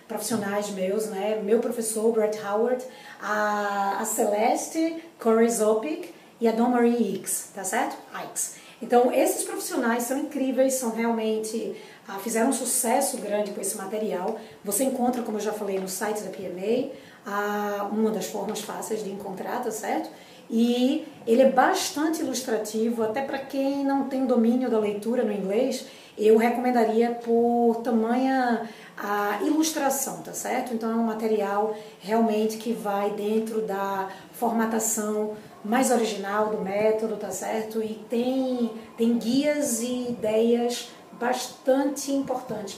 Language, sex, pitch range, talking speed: Portuguese, female, 210-250 Hz, 135 wpm